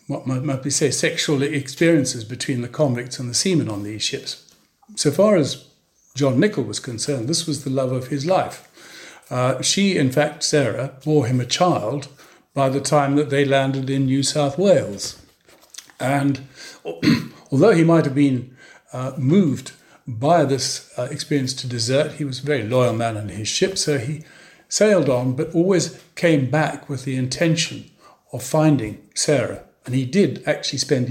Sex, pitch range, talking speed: male, 130-155 Hz, 175 wpm